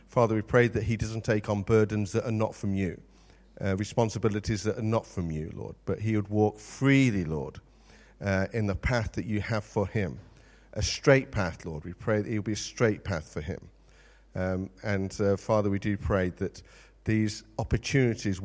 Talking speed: 200 wpm